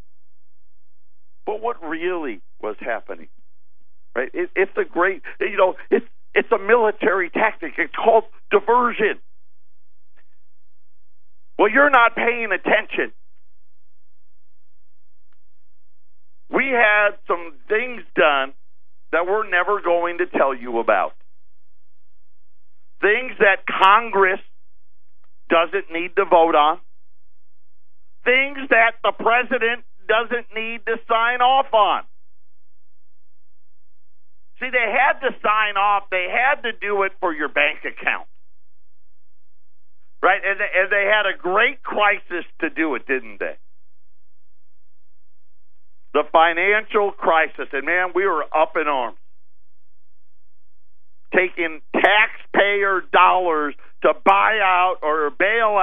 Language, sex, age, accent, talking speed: English, male, 50-69, American, 110 wpm